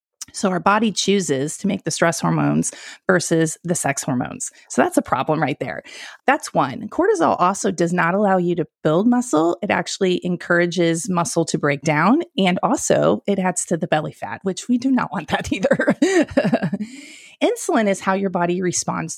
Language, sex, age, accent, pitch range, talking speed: English, female, 30-49, American, 170-240 Hz, 180 wpm